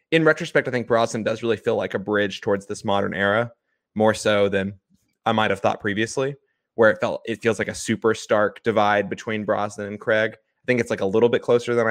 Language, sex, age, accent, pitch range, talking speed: English, male, 20-39, American, 100-120 Hz, 230 wpm